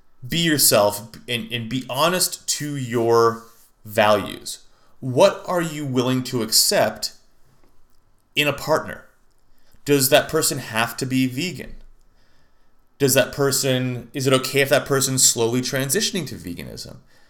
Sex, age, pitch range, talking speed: male, 30-49, 115-155 Hz, 130 wpm